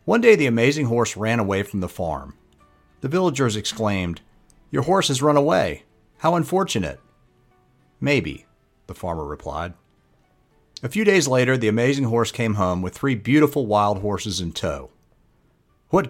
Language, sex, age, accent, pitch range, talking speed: English, male, 50-69, American, 95-140 Hz, 155 wpm